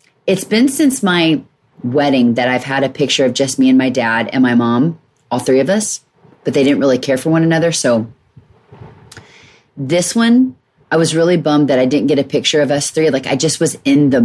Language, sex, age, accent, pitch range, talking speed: English, female, 30-49, American, 130-190 Hz, 225 wpm